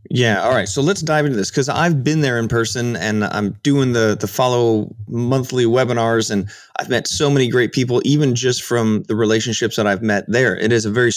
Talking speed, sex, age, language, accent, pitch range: 225 wpm, male, 30-49, English, American, 110-140 Hz